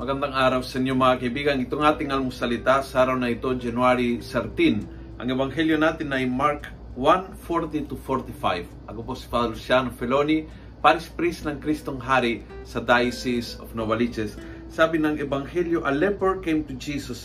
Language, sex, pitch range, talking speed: Filipino, male, 115-150 Hz, 155 wpm